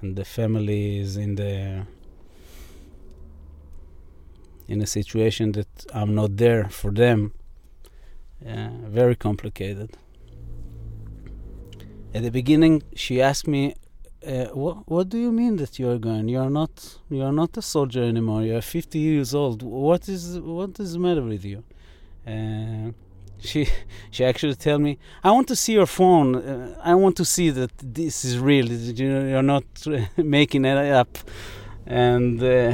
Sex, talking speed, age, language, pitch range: male, 155 wpm, 30-49, English, 105-130 Hz